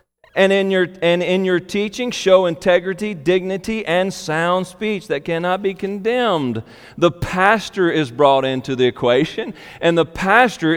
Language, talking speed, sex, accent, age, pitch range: English, 150 wpm, male, American, 40-59, 140-200 Hz